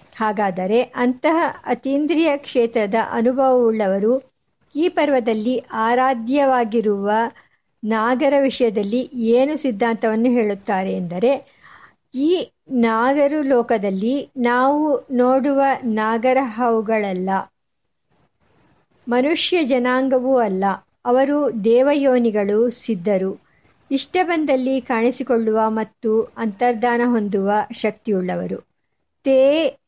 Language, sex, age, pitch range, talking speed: Kannada, male, 50-69, 220-265 Hz, 65 wpm